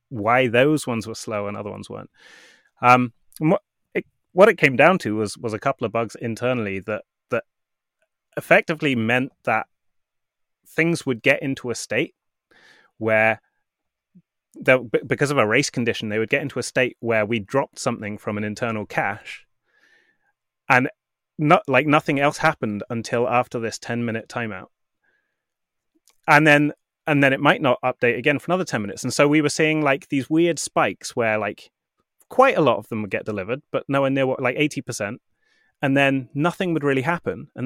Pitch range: 115-155 Hz